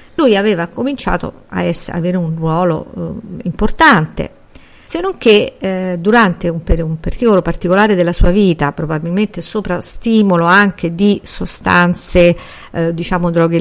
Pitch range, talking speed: 170-225 Hz, 130 wpm